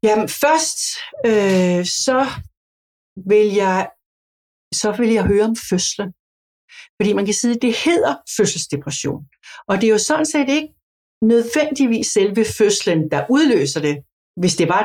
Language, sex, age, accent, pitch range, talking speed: Danish, female, 60-79, native, 185-240 Hz, 145 wpm